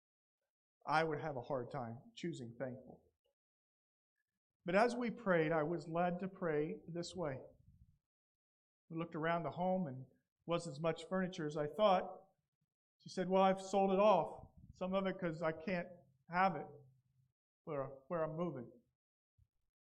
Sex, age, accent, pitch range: male, 50-69, American, 135-185 Hz